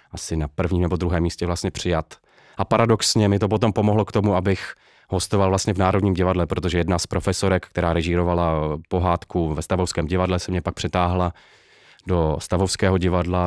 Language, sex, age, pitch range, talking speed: Czech, male, 30-49, 85-100 Hz, 175 wpm